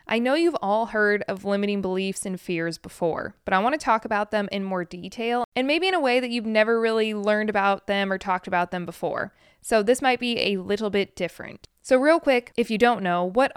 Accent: American